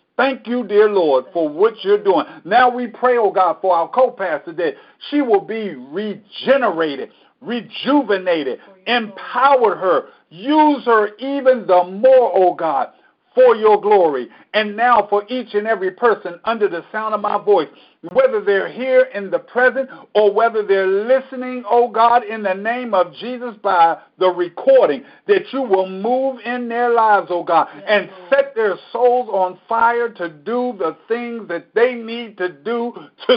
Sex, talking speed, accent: male, 165 wpm, American